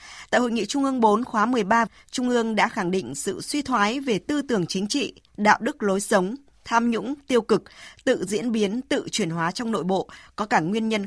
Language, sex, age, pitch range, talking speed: Vietnamese, female, 20-39, 195-245 Hz, 230 wpm